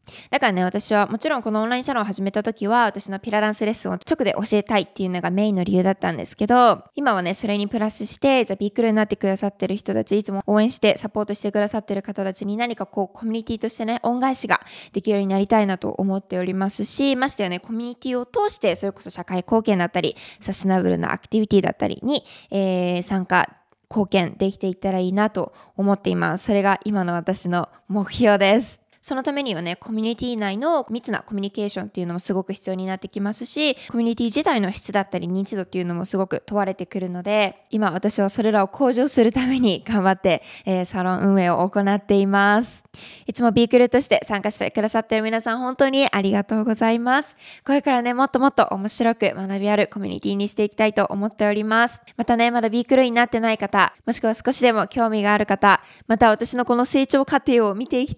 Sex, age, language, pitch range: female, 20-39, Japanese, 195-235 Hz